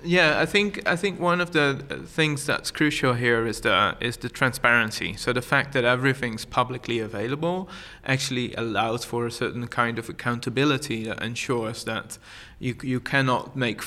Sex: male